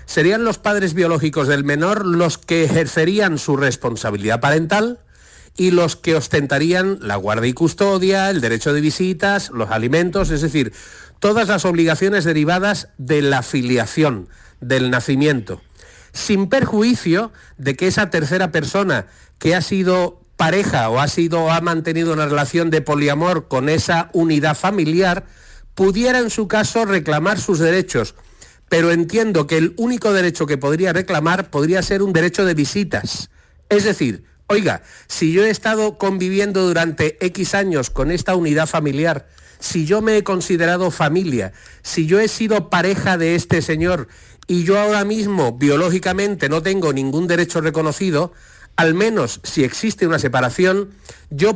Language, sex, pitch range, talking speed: Spanish, male, 150-195 Hz, 150 wpm